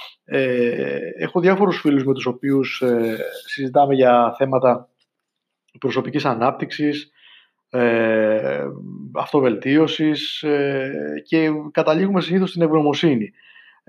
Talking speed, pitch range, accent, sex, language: 75 wpm, 130-165 Hz, native, male, Greek